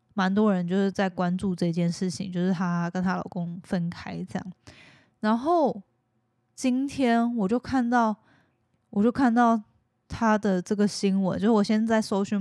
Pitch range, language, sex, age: 180-210 Hz, Chinese, female, 10-29